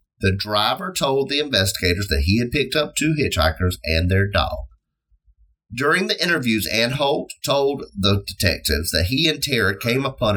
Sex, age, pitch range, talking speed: male, 30-49, 80-120 Hz, 160 wpm